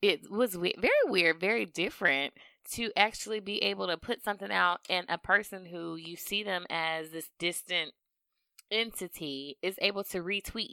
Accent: American